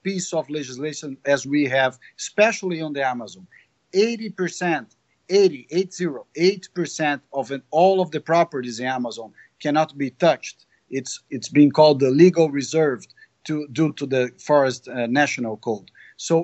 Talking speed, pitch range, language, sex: 155 wpm, 140-175 Hz, English, male